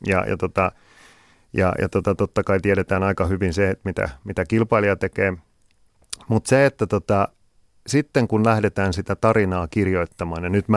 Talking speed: 140 wpm